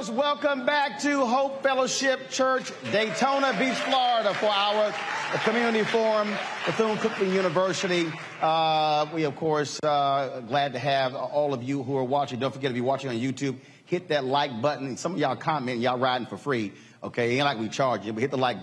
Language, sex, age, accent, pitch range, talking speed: English, male, 40-59, American, 120-180 Hz, 190 wpm